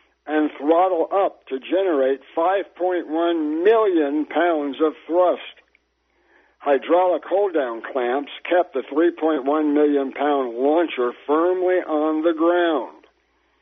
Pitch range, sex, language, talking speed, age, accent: 135-175 Hz, male, English, 100 wpm, 60-79, American